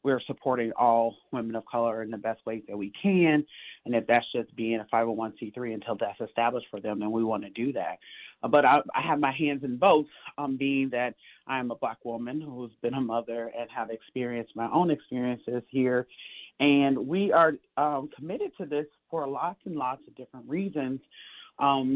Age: 30-49